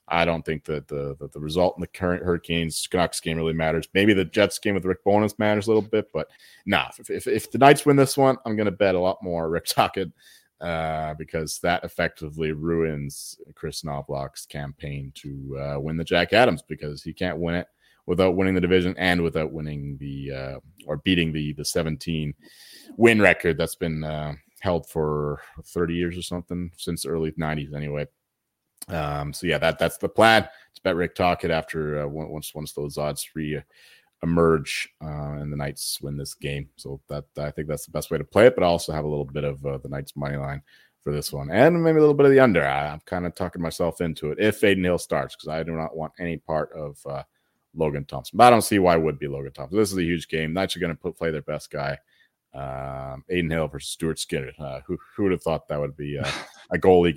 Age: 30-49